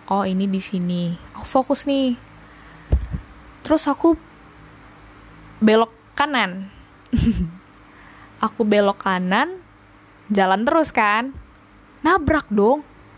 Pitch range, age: 200-275 Hz, 20-39